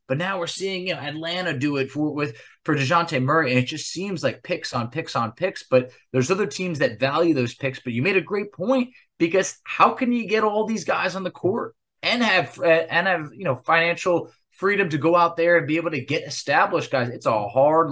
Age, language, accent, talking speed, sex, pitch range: 20-39, English, American, 240 wpm, male, 130-170 Hz